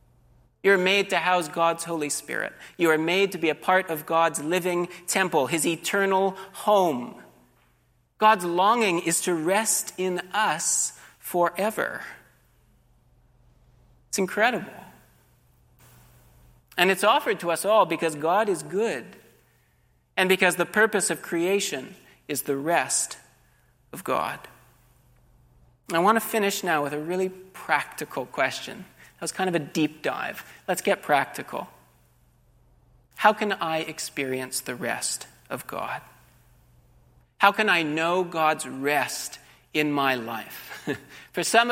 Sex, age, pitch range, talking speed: male, 40-59, 130-185 Hz, 130 wpm